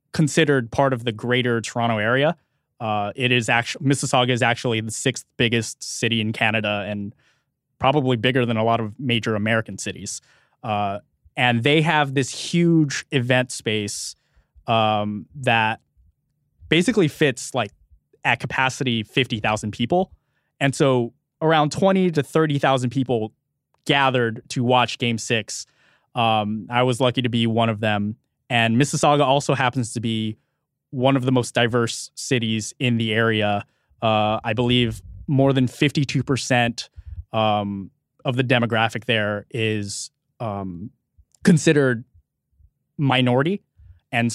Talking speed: 135 wpm